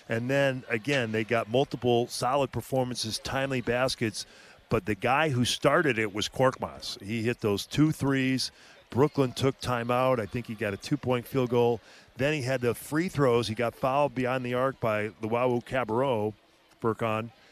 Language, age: English, 40-59